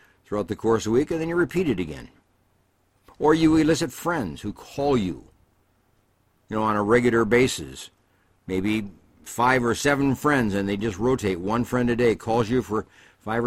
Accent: American